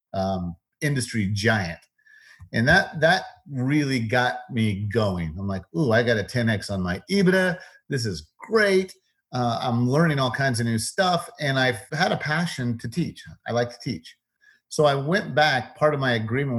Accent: American